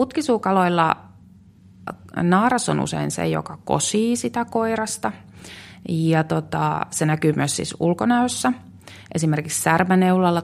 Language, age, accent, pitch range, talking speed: Finnish, 30-49, native, 95-155 Hz, 105 wpm